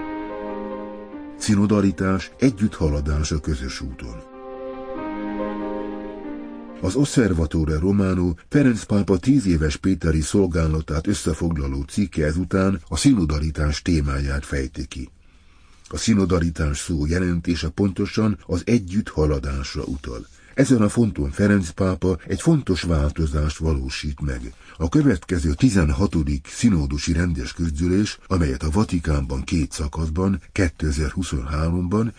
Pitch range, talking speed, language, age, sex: 75-100 Hz, 95 wpm, Hungarian, 60-79, male